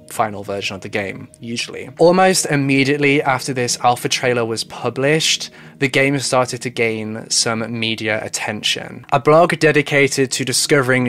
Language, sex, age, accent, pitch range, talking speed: English, male, 10-29, British, 115-145 Hz, 145 wpm